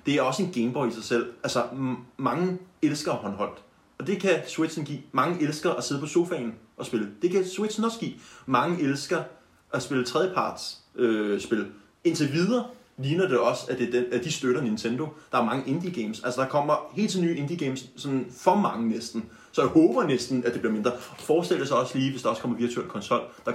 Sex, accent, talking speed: male, native, 220 wpm